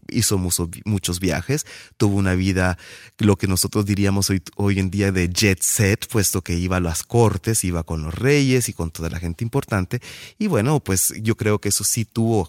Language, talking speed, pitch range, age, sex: Spanish, 200 wpm, 95-115 Hz, 30-49, male